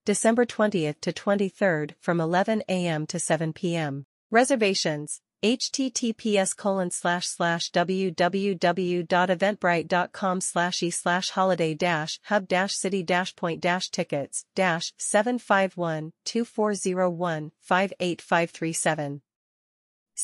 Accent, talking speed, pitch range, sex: American, 90 wpm, 160-200 Hz, female